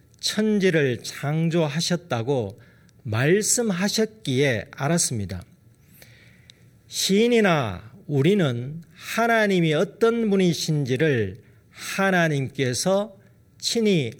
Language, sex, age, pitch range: Korean, male, 40-59, 130-195 Hz